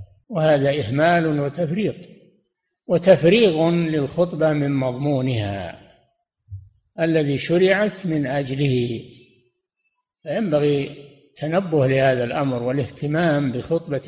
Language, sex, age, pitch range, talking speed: Arabic, male, 60-79, 135-175 Hz, 70 wpm